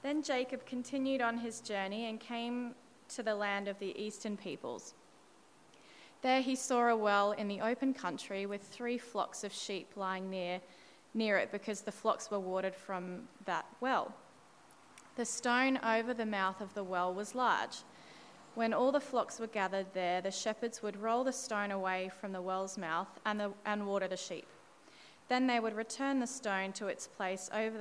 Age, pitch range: 20-39, 195-245 Hz